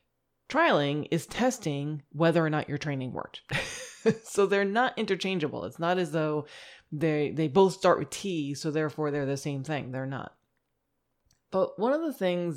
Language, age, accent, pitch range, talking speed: English, 30-49, American, 155-215 Hz, 170 wpm